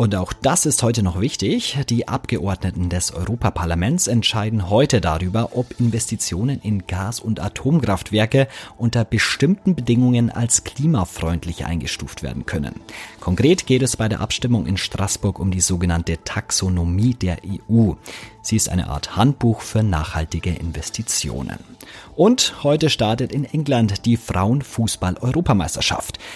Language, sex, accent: German, male, German